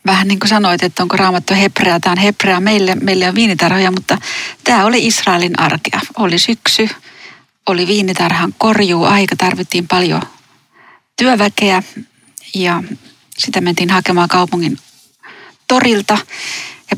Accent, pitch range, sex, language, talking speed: native, 185-220 Hz, female, Finnish, 125 wpm